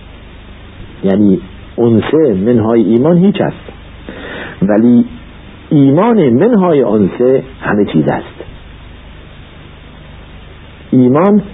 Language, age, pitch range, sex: Persian, 60-79, 90-130 Hz, male